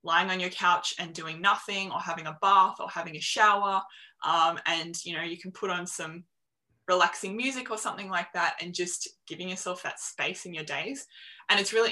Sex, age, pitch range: female, 20-39, 170-200 Hz